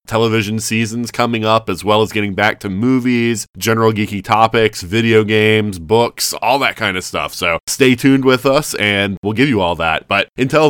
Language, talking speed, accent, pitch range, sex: English, 195 wpm, American, 100-115 Hz, male